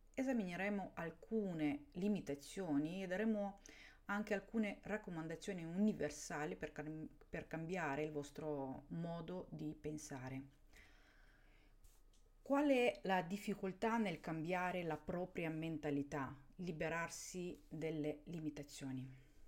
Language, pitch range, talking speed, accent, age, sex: Italian, 150-215 Hz, 90 wpm, native, 40-59, female